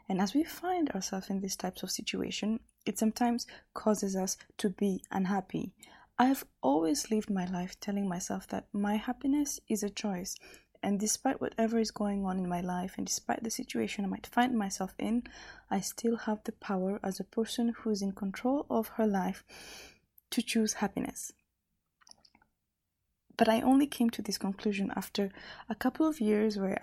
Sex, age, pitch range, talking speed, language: female, 20-39, 195-235 Hz, 180 wpm, English